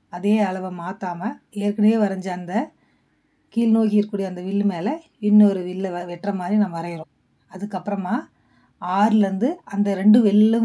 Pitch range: 185-225 Hz